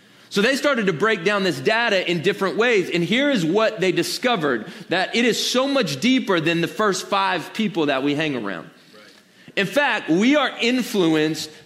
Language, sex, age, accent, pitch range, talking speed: English, male, 30-49, American, 175-230 Hz, 190 wpm